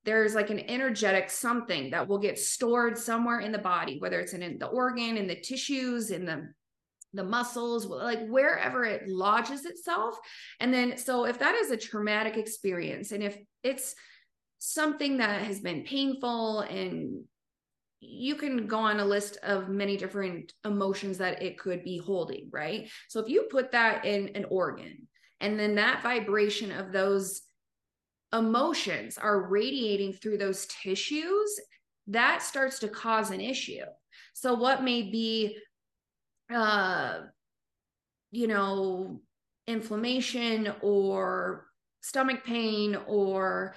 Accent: American